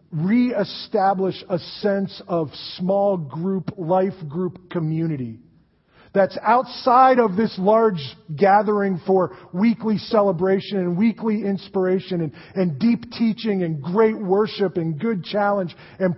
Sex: male